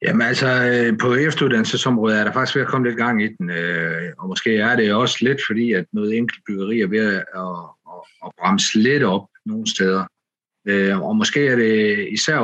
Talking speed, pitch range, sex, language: 200 wpm, 95-125 Hz, male, Danish